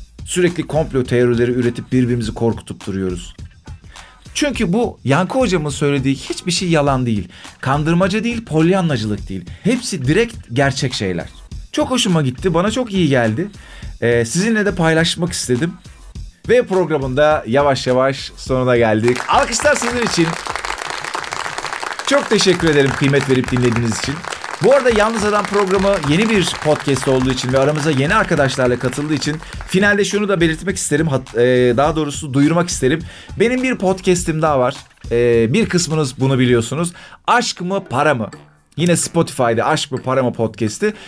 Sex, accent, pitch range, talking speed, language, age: male, native, 120-180 Hz, 140 wpm, Turkish, 40-59